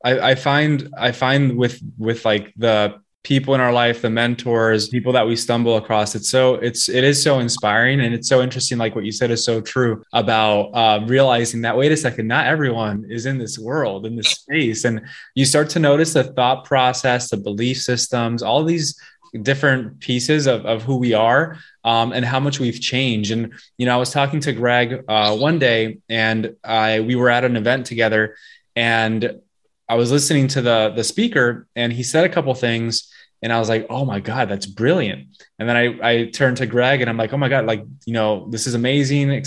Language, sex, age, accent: English, male, 20-39, American